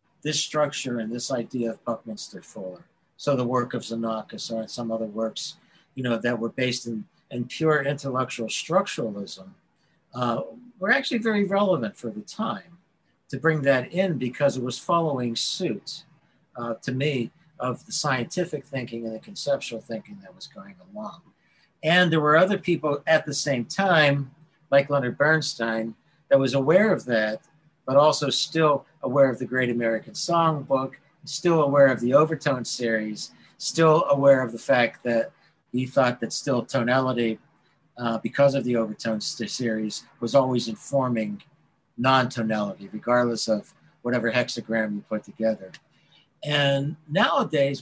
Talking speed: 150 wpm